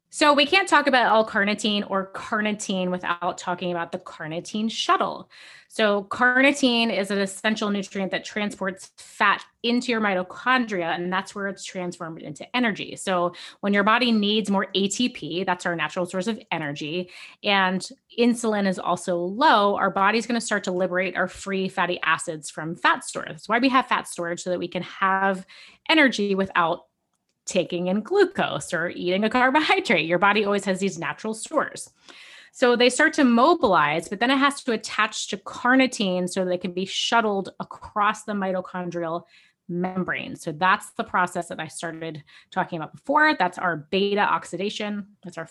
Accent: American